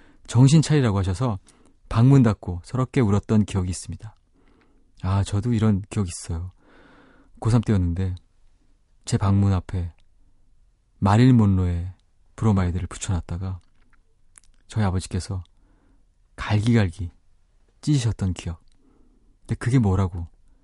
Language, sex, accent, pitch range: Korean, male, native, 90-120 Hz